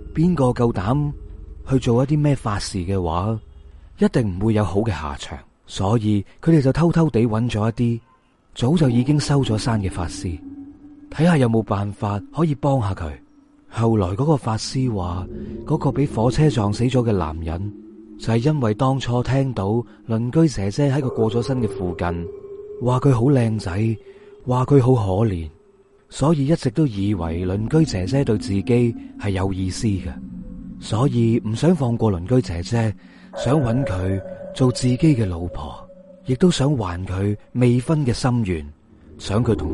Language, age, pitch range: Chinese, 30-49, 100-140 Hz